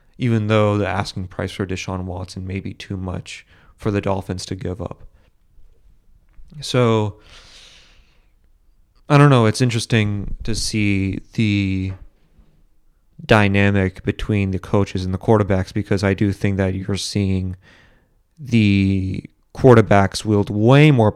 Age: 30-49